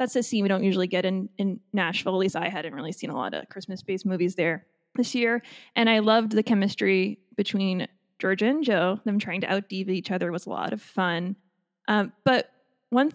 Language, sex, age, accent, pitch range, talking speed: English, female, 20-39, American, 190-230 Hz, 215 wpm